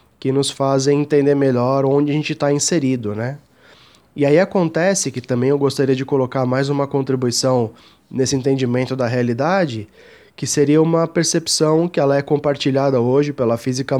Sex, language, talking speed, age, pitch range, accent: male, Portuguese, 165 wpm, 20-39, 130-160 Hz, Brazilian